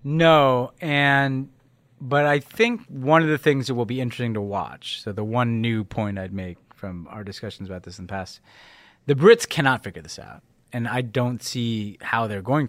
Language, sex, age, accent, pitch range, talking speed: English, male, 30-49, American, 105-135 Hz, 205 wpm